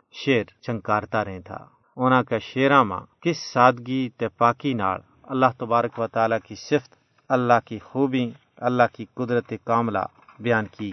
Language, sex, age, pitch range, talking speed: Urdu, male, 40-59, 115-140 Hz, 150 wpm